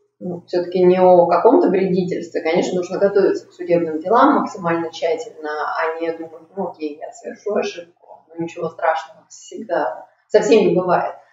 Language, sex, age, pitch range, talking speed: Russian, female, 20-39, 170-220 Hz, 155 wpm